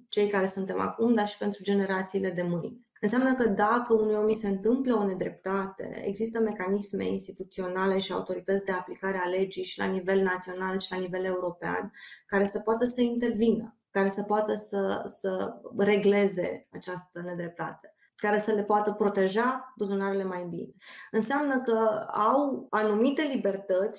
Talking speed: 160 wpm